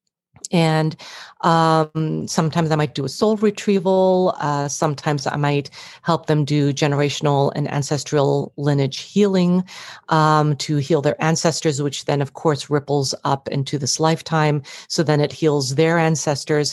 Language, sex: English, female